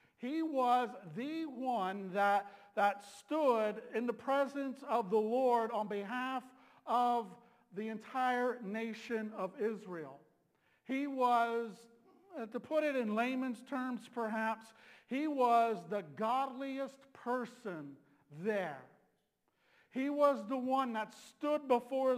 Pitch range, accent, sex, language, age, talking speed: 210-255 Hz, American, male, English, 50-69, 115 wpm